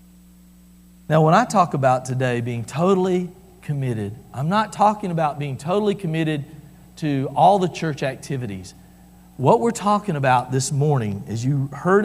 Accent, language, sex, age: American, English, male, 50-69